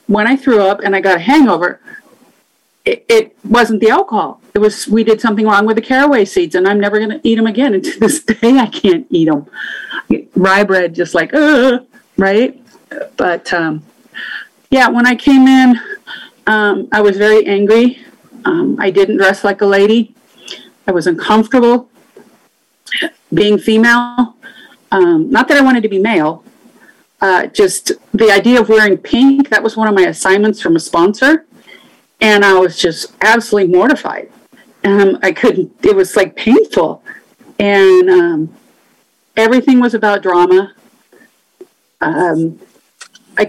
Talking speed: 160 wpm